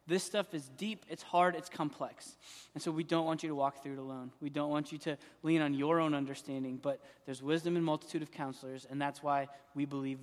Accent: American